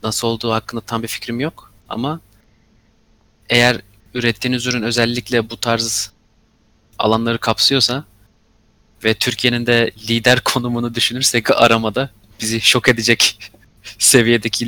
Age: 30-49